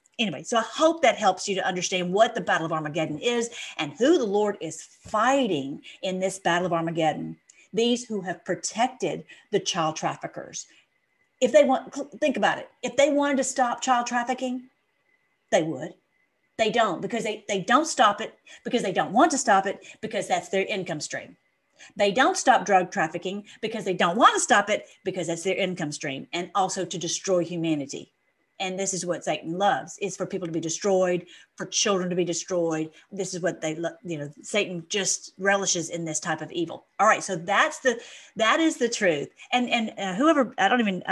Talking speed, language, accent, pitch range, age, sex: 200 wpm, English, American, 180-235 Hz, 40-59, female